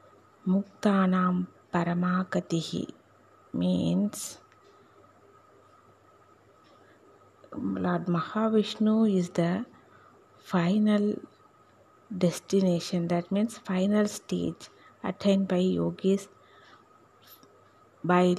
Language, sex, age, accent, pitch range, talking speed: Tamil, female, 20-39, native, 175-200 Hz, 40 wpm